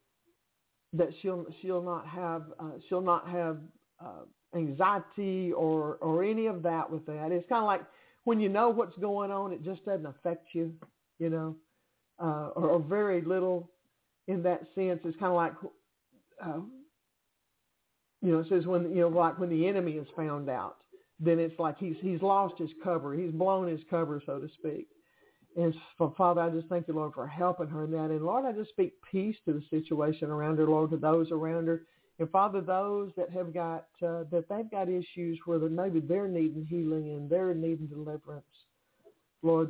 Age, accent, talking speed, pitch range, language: 50-69, American, 195 wpm, 160-180 Hz, English